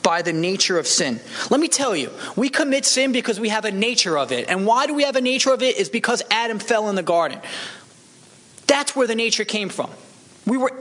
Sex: male